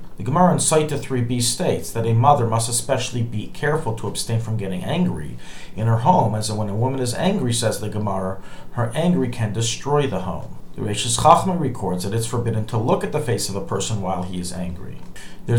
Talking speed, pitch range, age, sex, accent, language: 225 wpm, 110-130 Hz, 40-59, male, American, English